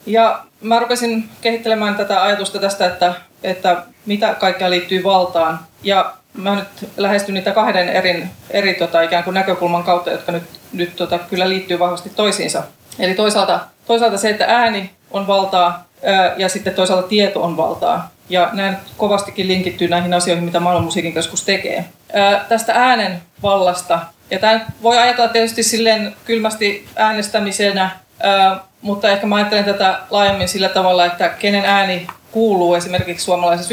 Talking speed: 150 wpm